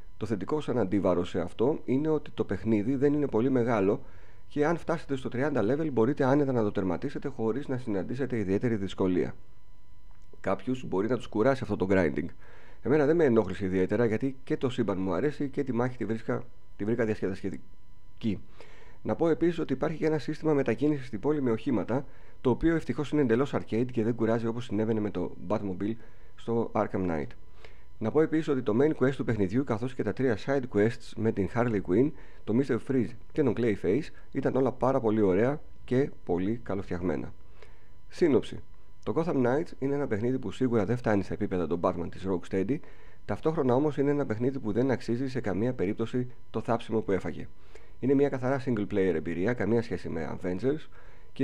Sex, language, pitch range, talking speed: male, Greek, 100-135 Hz, 190 wpm